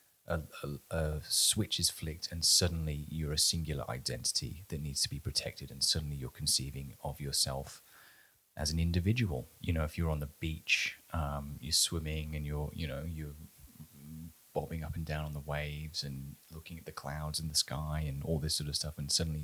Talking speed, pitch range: 195 wpm, 75-85 Hz